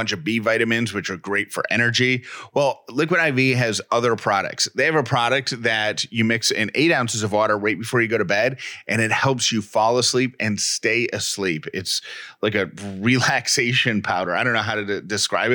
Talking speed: 200 wpm